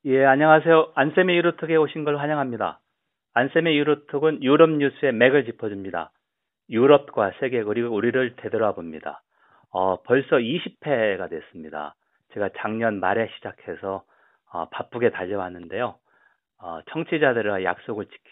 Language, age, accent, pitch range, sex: Korean, 40-59, native, 105-160 Hz, male